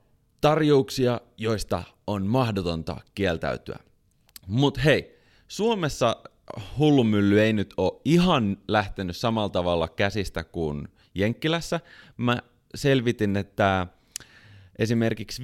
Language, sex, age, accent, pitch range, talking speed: Finnish, male, 30-49, native, 90-120 Hz, 90 wpm